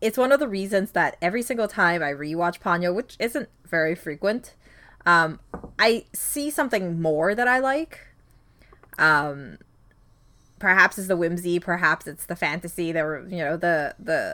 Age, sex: 20-39, female